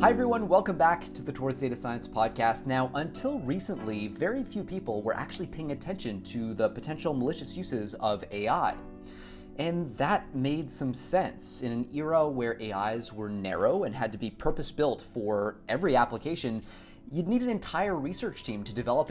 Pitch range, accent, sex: 110-155 Hz, American, male